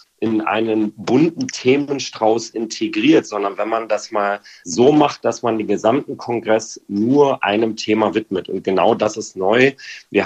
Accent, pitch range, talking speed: German, 110-125 Hz, 160 wpm